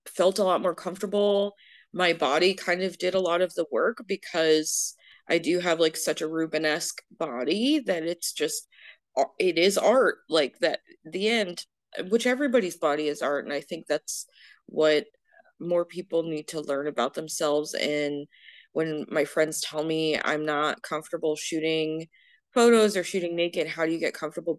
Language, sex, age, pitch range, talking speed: English, female, 20-39, 155-200 Hz, 170 wpm